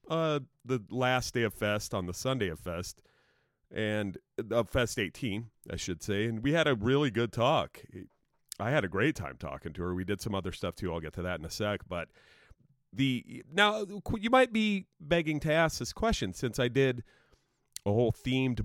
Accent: American